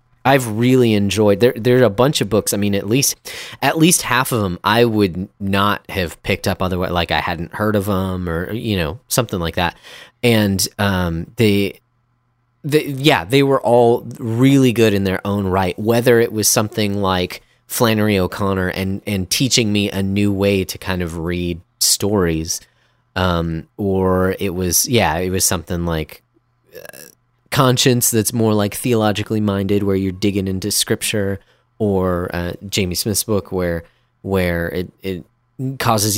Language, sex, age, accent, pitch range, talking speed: English, male, 30-49, American, 95-120 Hz, 175 wpm